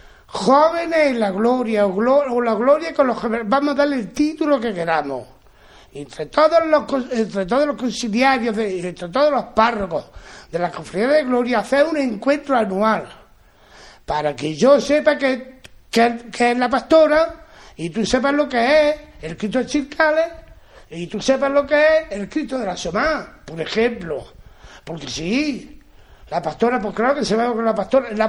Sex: male